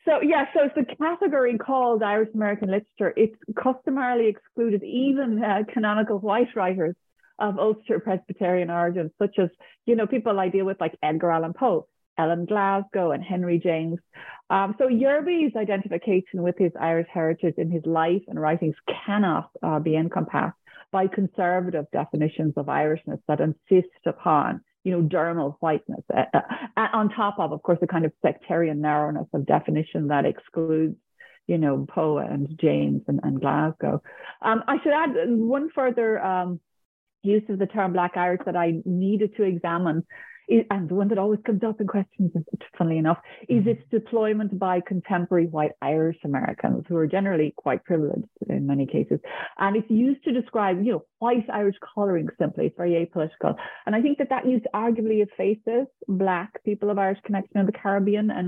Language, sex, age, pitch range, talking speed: English, female, 30-49, 170-220 Hz, 170 wpm